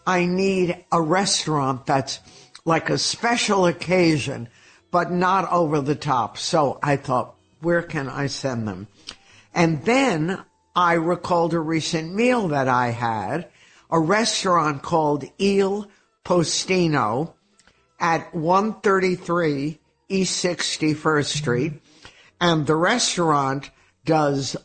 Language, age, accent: English, 60-79, American